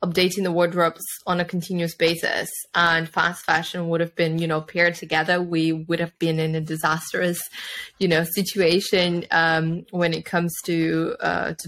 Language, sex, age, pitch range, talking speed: English, female, 20-39, 165-180 Hz, 175 wpm